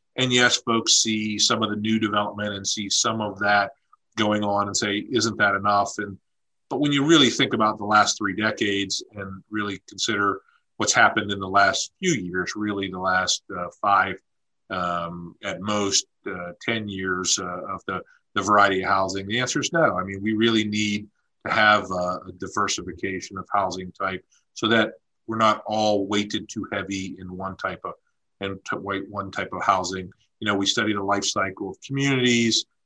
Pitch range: 95-115 Hz